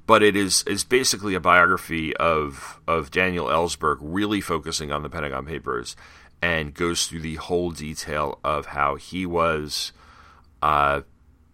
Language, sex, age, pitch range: English, male, 40-59, 75-90 Hz